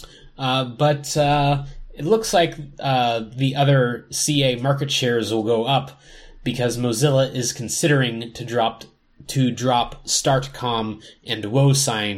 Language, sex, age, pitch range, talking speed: English, male, 20-39, 105-130 Hz, 130 wpm